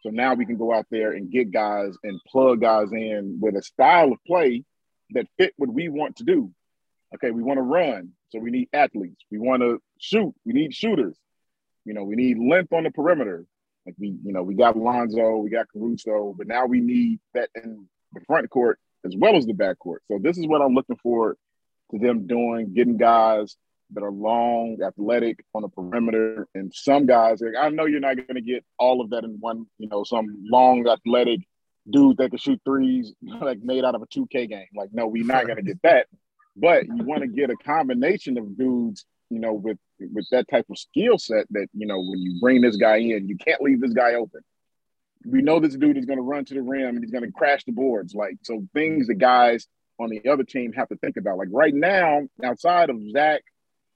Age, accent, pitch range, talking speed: 30-49, American, 110-140 Hz, 230 wpm